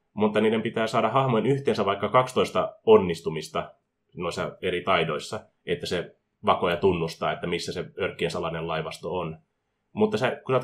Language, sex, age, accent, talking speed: Finnish, male, 20-39, native, 160 wpm